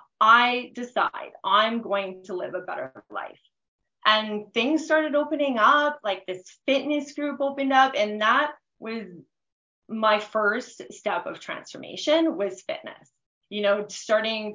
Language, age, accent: English, 20-39, American